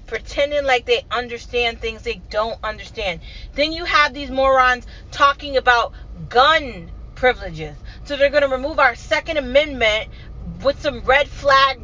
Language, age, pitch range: English, 30-49, 245-310 Hz